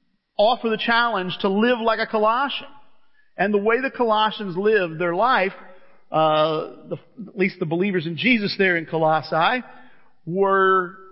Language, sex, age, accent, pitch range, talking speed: English, male, 40-59, American, 175-215 Hz, 145 wpm